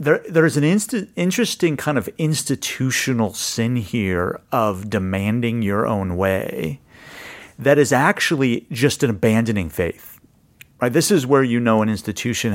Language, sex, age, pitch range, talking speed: English, male, 40-59, 100-140 Hz, 145 wpm